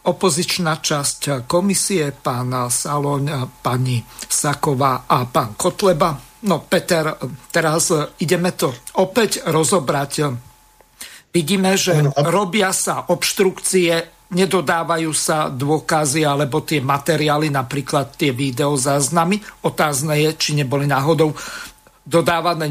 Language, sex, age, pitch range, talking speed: Slovak, male, 50-69, 145-175 Hz, 100 wpm